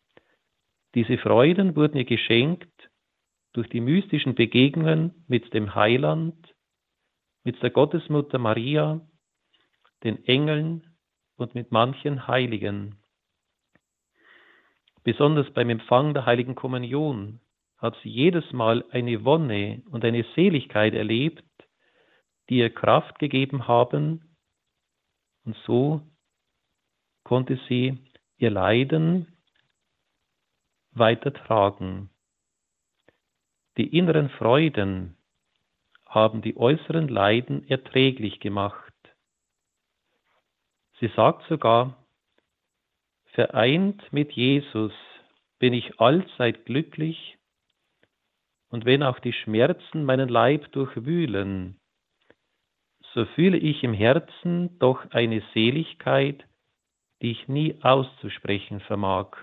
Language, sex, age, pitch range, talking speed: German, male, 40-59, 110-150 Hz, 90 wpm